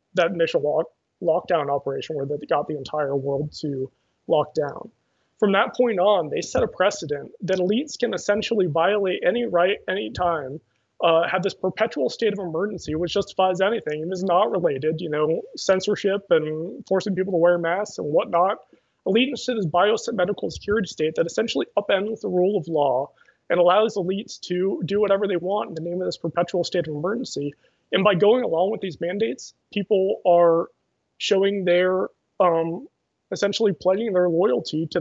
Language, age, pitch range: English, 30-49, 165-200 Hz